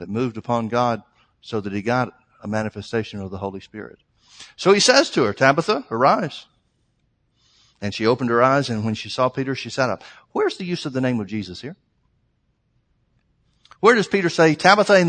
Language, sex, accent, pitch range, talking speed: English, male, American, 105-135 Hz, 195 wpm